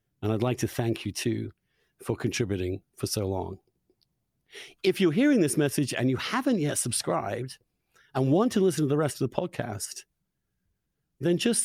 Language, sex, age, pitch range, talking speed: English, male, 60-79, 120-185 Hz, 175 wpm